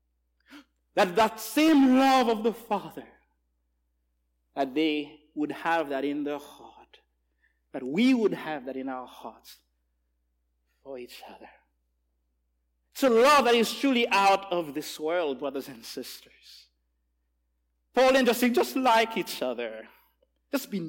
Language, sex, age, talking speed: English, male, 50-69, 140 wpm